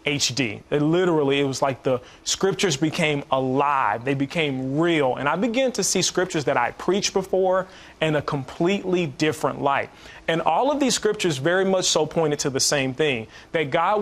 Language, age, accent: English, 30-49, American